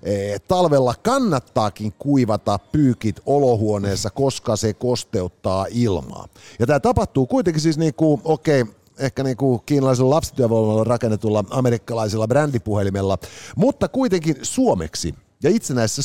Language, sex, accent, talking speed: Finnish, male, native, 105 wpm